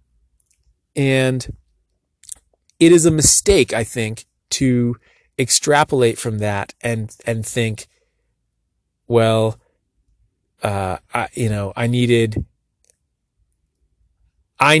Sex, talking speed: male, 90 wpm